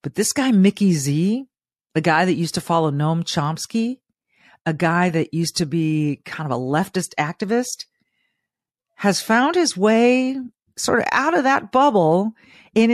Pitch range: 155-215 Hz